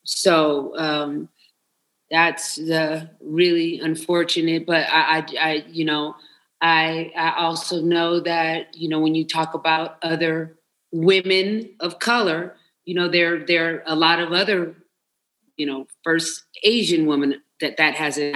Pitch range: 150-170 Hz